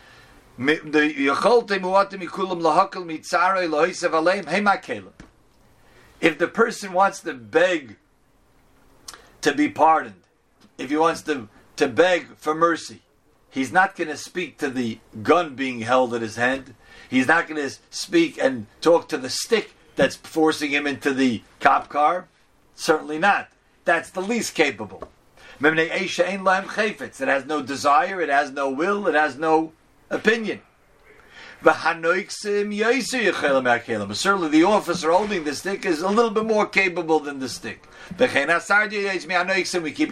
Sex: male